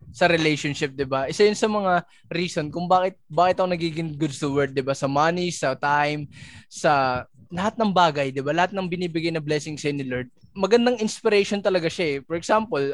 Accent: native